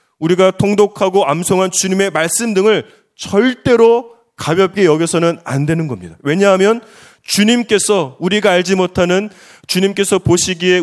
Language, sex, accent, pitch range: Korean, male, native, 145-200 Hz